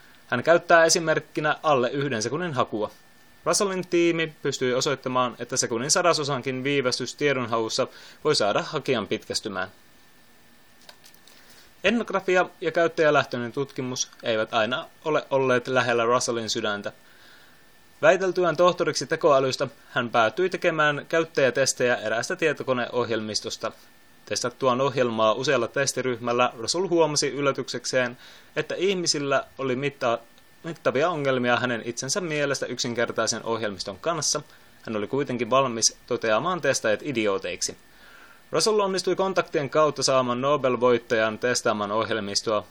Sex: male